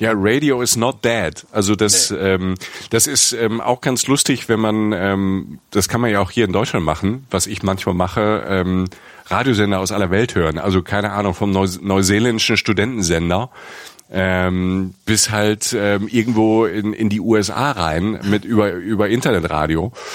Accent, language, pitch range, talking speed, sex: German, German, 100-125 Hz, 165 wpm, male